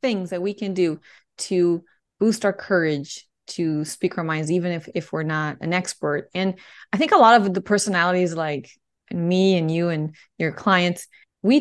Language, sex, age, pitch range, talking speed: English, female, 20-39, 170-210 Hz, 185 wpm